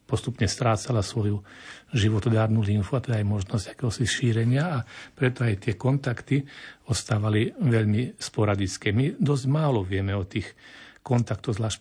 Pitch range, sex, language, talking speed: 110-130 Hz, male, Slovak, 135 wpm